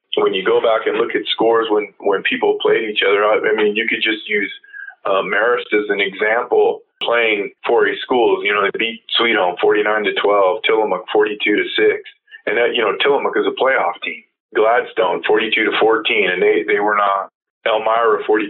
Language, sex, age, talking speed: English, male, 20-39, 185 wpm